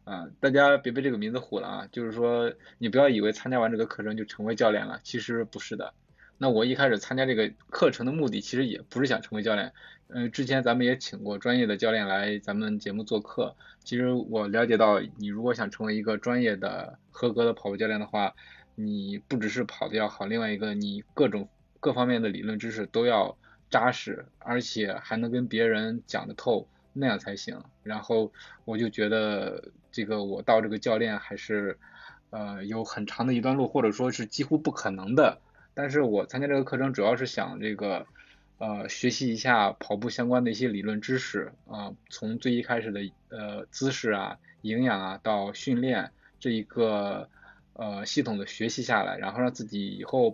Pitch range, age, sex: 105-130 Hz, 20-39, male